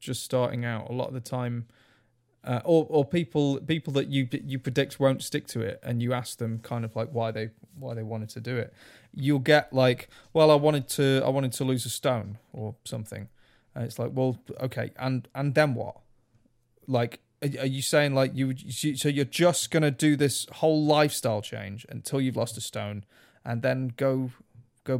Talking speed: 200 wpm